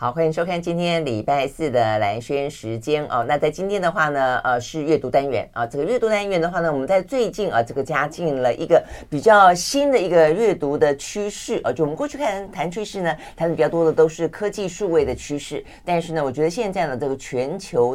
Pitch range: 130-175 Hz